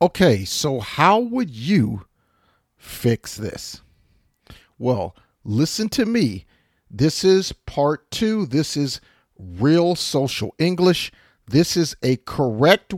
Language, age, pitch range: English, 50-69, 110-175 Hz